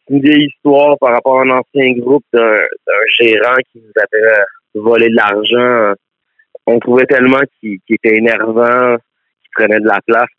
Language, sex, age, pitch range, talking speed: French, male, 30-49, 105-135 Hz, 175 wpm